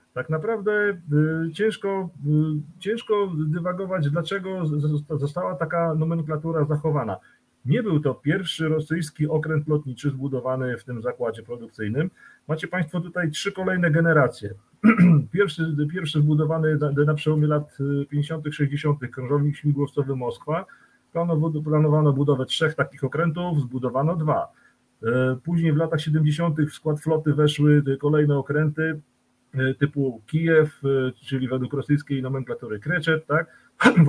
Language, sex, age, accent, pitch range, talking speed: Polish, male, 40-59, native, 130-165 Hz, 115 wpm